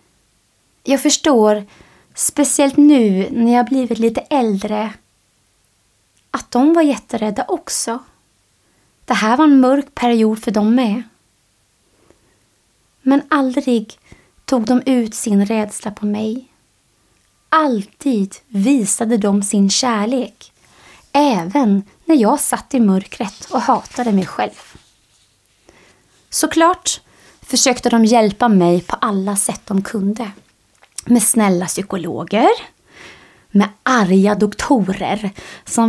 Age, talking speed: 20-39, 110 wpm